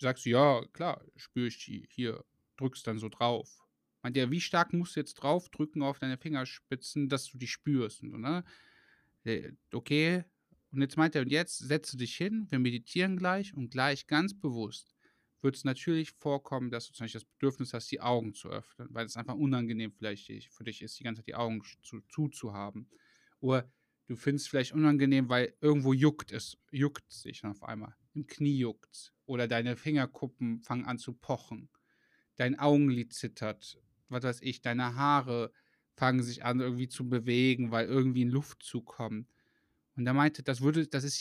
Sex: male